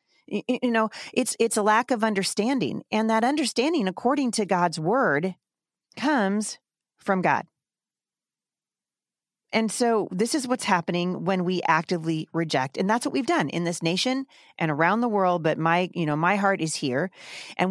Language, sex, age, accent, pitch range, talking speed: English, female, 40-59, American, 165-225 Hz, 165 wpm